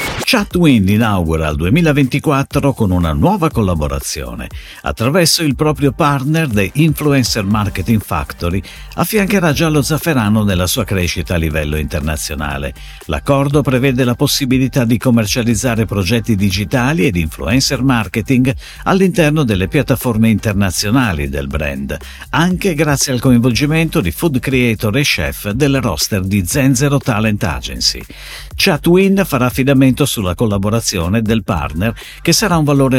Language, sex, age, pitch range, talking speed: Italian, male, 50-69, 95-150 Hz, 125 wpm